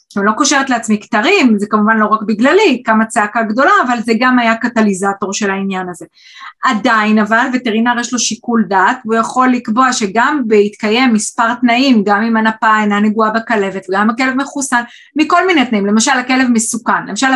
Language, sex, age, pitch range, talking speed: Hebrew, female, 20-39, 220-270 Hz, 175 wpm